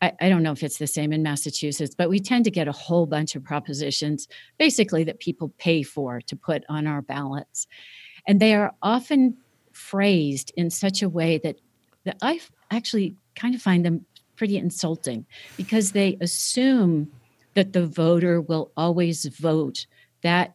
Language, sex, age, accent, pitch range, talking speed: English, female, 50-69, American, 150-200 Hz, 170 wpm